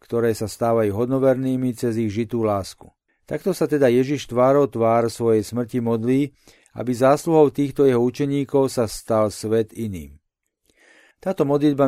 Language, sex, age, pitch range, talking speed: Slovak, male, 40-59, 115-135 Hz, 140 wpm